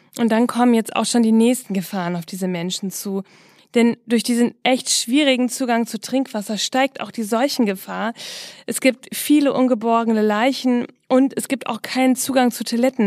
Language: German